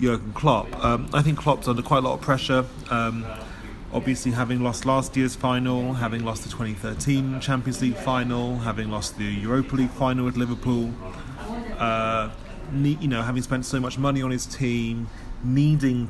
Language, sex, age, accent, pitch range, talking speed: English, male, 30-49, British, 115-135 Hz, 170 wpm